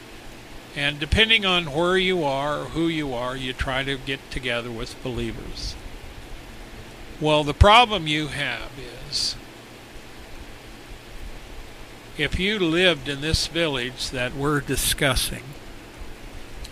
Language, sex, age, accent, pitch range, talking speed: English, male, 60-79, American, 115-175 Hz, 110 wpm